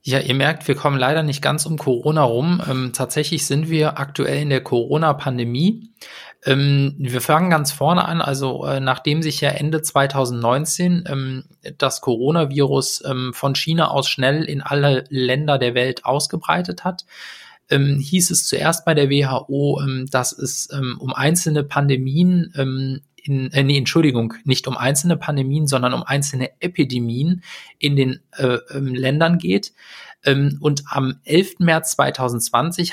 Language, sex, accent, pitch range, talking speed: German, male, German, 135-160 Hz, 155 wpm